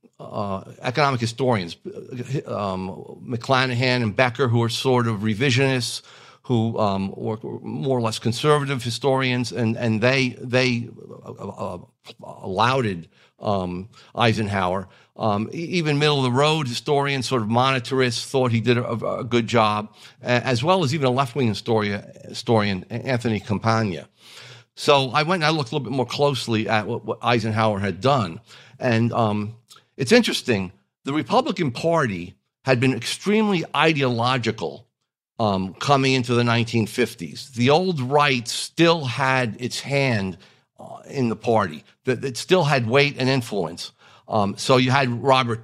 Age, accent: 50-69, American